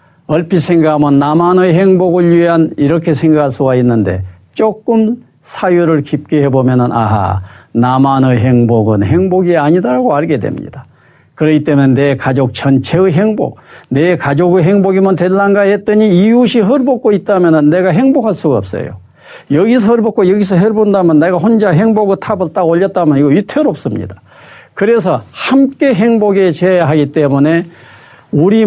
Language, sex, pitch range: Korean, male, 145-230 Hz